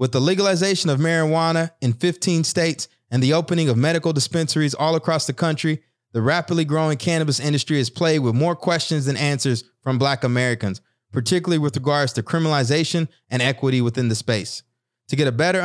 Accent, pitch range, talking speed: American, 125-165 Hz, 180 wpm